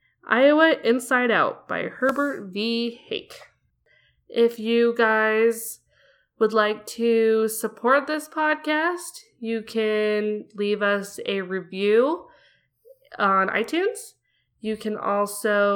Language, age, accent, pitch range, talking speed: English, 20-39, American, 205-275 Hz, 105 wpm